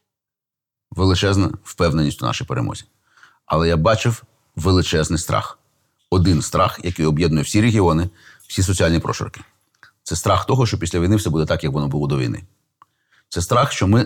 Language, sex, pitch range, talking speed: Ukrainian, male, 80-105 Hz, 160 wpm